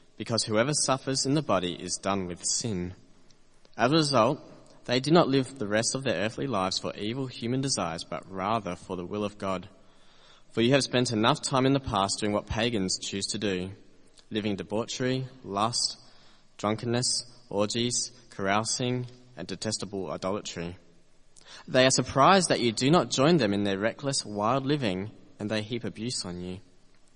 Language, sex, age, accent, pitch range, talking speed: English, male, 20-39, Australian, 95-125 Hz, 170 wpm